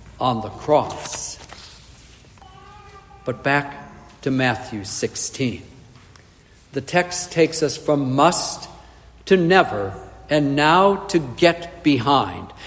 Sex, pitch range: male, 140-210 Hz